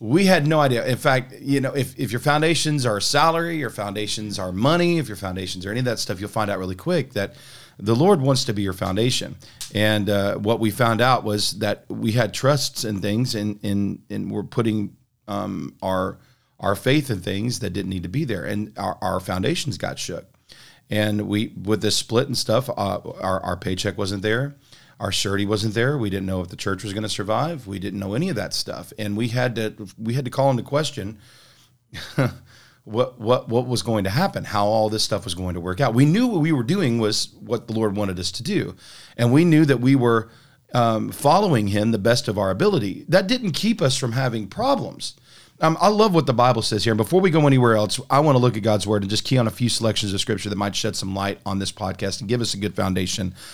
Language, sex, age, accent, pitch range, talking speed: English, male, 40-59, American, 105-135 Hz, 240 wpm